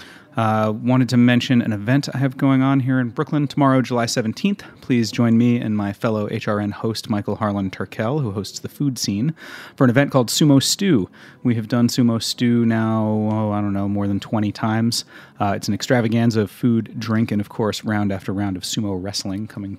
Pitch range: 100-125 Hz